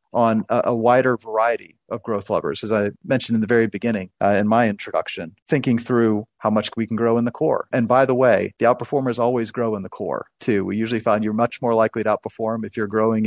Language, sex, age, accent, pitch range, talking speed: English, male, 40-59, American, 105-120 Hz, 235 wpm